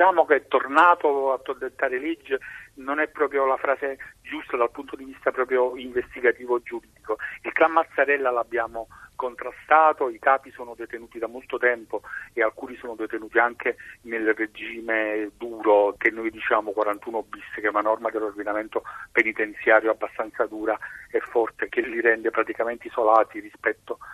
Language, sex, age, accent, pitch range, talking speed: Italian, male, 40-59, native, 115-155 Hz, 150 wpm